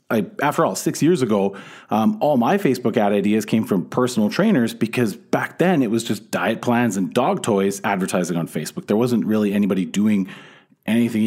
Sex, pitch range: male, 120-200 Hz